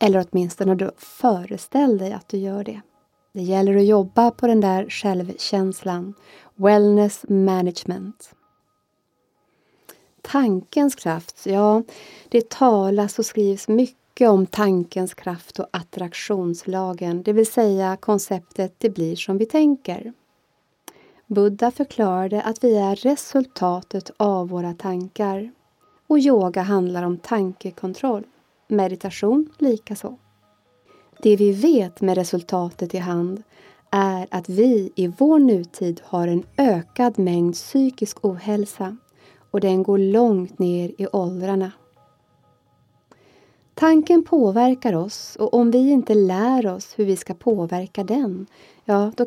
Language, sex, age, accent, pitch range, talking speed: English, female, 30-49, Swedish, 185-225 Hz, 120 wpm